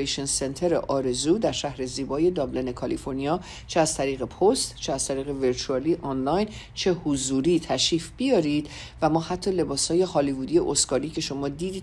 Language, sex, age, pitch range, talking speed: Persian, female, 50-69, 135-170 Hz, 145 wpm